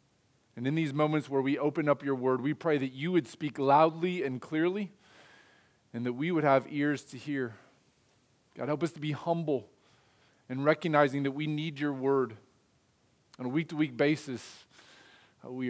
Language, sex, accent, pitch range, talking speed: English, male, American, 125-160 Hz, 170 wpm